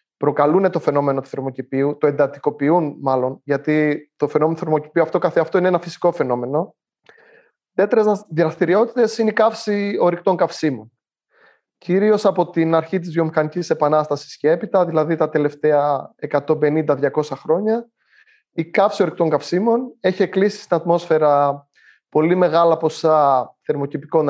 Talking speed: 125 wpm